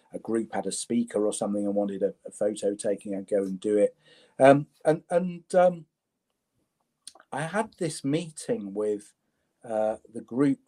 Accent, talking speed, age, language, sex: British, 170 wpm, 40-59, English, male